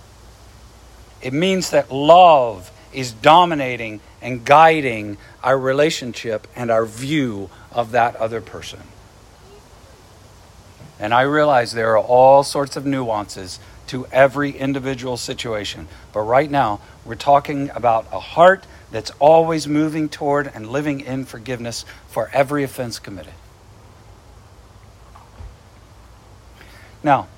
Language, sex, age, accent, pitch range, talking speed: English, male, 50-69, American, 105-150 Hz, 110 wpm